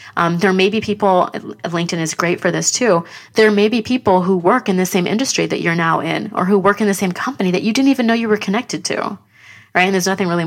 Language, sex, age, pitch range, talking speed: English, female, 20-39, 170-210 Hz, 265 wpm